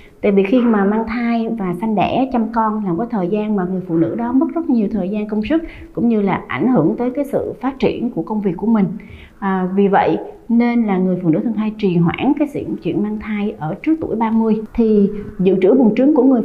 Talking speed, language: 250 wpm, Vietnamese